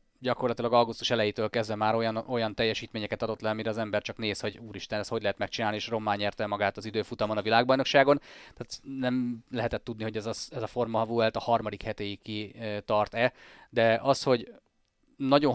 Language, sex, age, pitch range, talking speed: Hungarian, male, 30-49, 110-130 Hz, 190 wpm